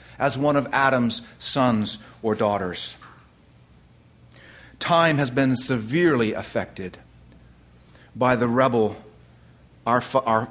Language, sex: English, male